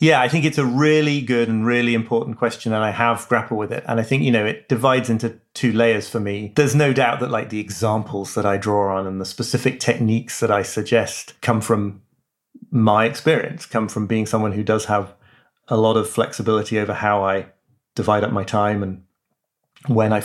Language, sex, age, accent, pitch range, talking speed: English, male, 30-49, British, 105-130 Hz, 215 wpm